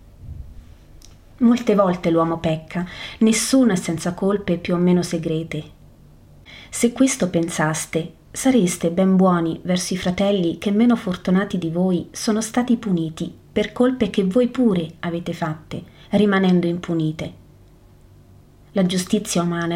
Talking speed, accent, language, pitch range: 125 wpm, native, Italian, 165-205 Hz